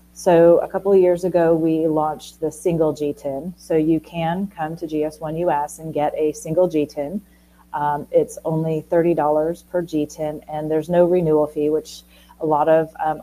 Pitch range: 145-165 Hz